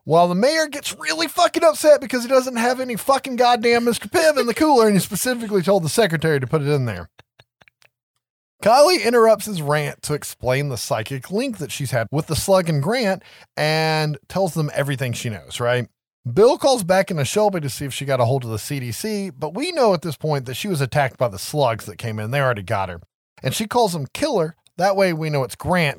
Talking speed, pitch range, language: 230 wpm, 120-190 Hz, English